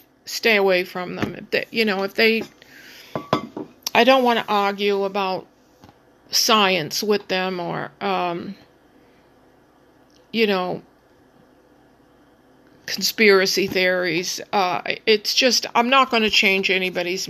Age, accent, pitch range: 50-69, American, 180-210 Hz